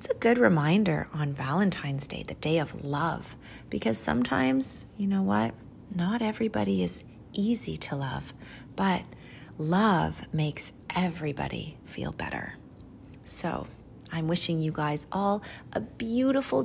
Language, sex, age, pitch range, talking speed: English, female, 30-49, 145-200 Hz, 130 wpm